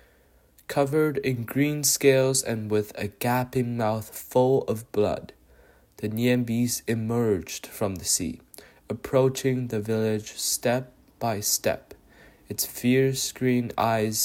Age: 20-39